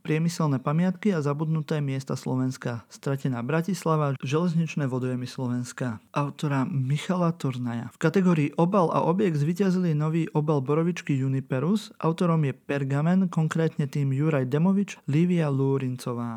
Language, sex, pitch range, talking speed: Slovak, male, 135-170 Hz, 120 wpm